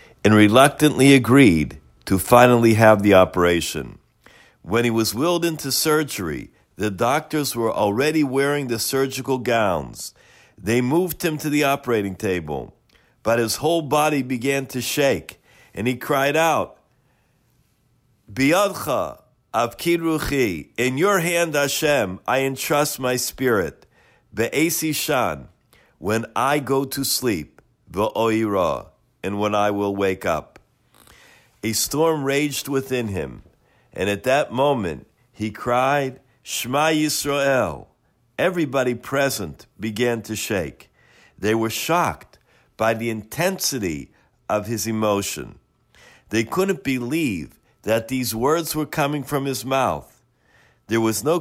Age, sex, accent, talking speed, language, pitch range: 50-69, male, American, 125 wpm, English, 110-145 Hz